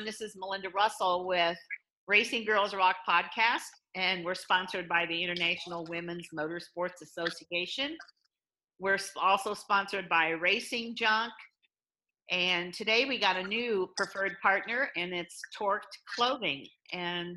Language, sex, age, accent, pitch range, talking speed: English, female, 50-69, American, 175-220 Hz, 130 wpm